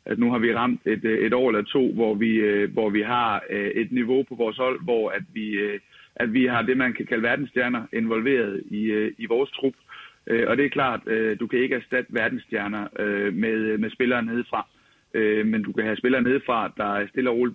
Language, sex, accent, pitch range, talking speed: Danish, male, native, 110-140 Hz, 200 wpm